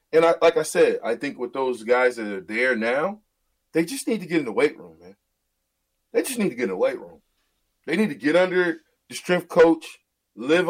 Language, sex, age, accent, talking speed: English, male, 30-49, American, 235 wpm